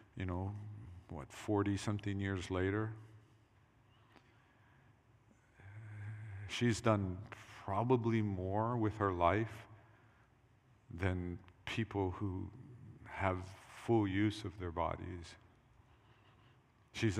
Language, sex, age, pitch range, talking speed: English, male, 50-69, 95-115 Hz, 80 wpm